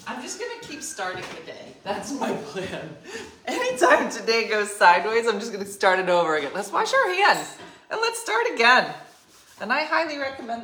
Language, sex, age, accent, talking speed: English, female, 30-49, American, 185 wpm